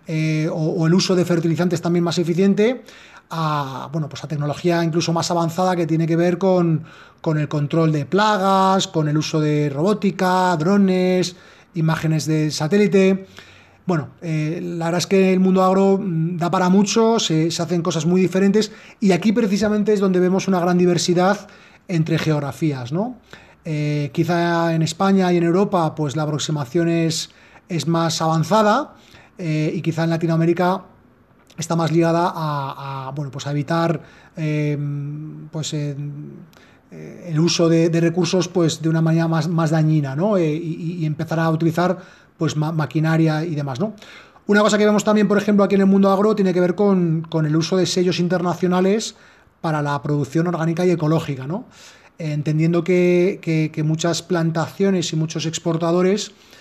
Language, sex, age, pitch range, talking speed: Spanish, male, 30-49, 155-185 Hz, 170 wpm